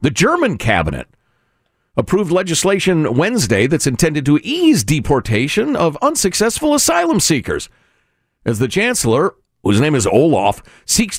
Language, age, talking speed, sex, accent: English, 50-69, 125 wpm, male, American